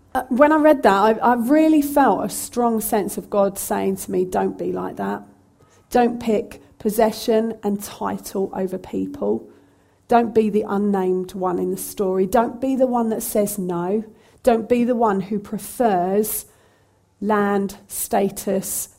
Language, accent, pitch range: English, British, 185-225 Hz